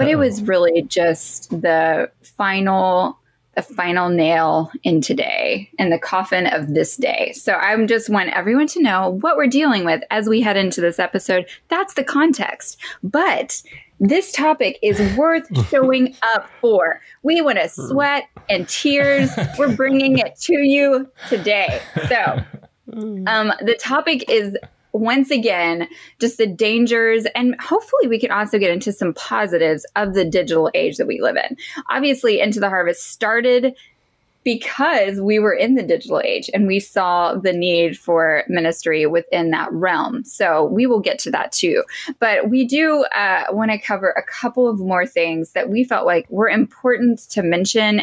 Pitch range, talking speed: 180-270 Hz, 165 wpm